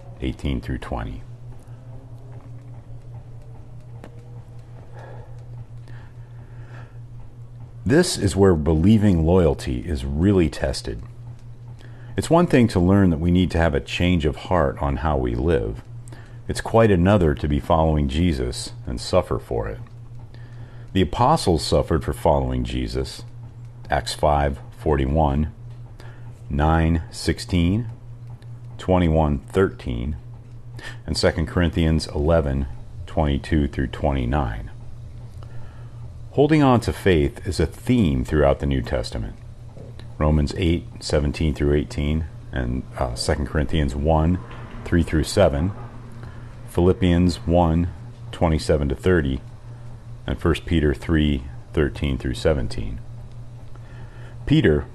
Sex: male